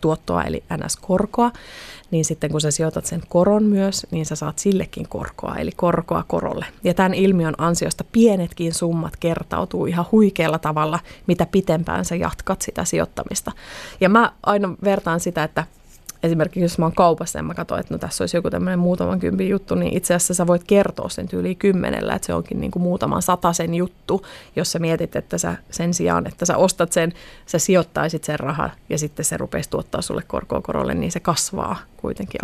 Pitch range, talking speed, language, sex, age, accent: 160-190 Hz, 185 wpm, Finnish, female, 30-49, native